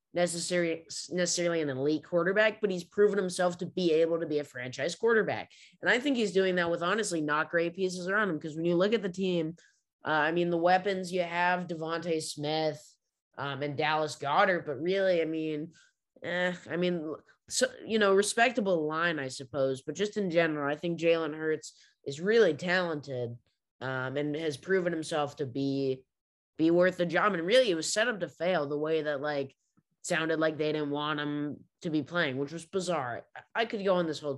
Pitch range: 145-180 Hz